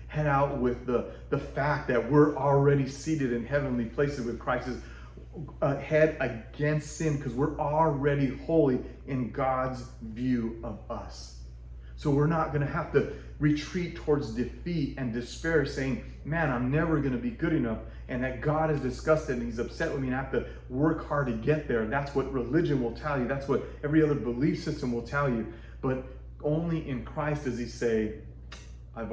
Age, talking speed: 30-49, 185 wpm